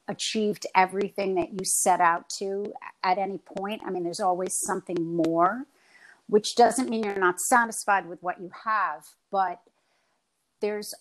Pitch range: 170-200 Hz